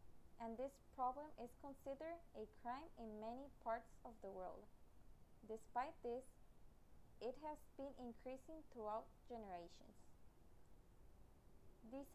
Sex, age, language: female, 20-39, English